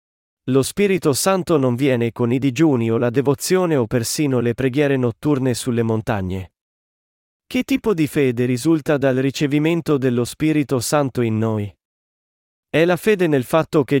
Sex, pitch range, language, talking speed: male, 120-165 Hz, Italian, 155 wpm